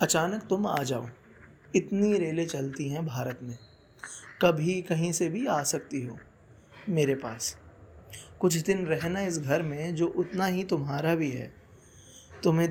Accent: native